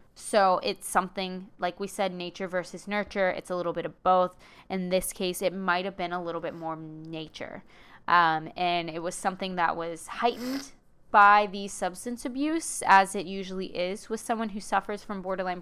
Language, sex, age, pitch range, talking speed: English, female, 20-39, 175-210 Hz, 190 wpm